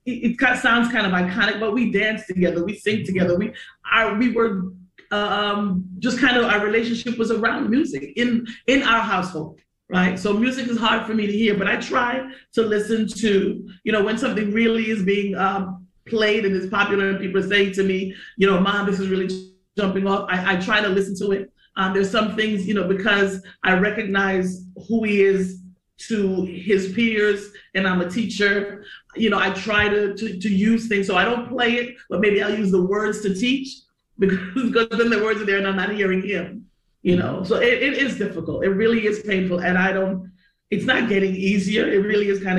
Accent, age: American, 30-49